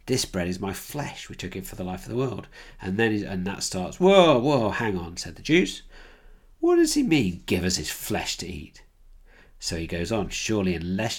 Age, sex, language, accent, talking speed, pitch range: 40-59, male, English, British, 225 wpm, 85-110 Hz